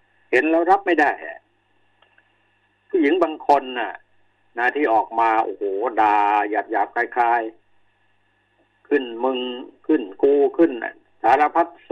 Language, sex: Thai, male